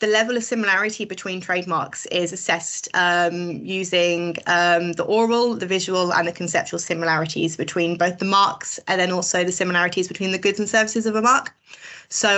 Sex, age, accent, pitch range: female, 20-39, British, 175-205 Hz